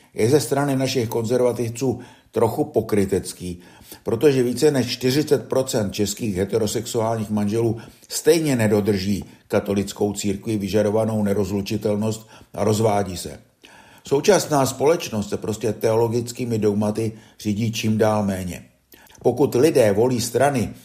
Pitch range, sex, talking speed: 105-125 Hz, male, 105 wpm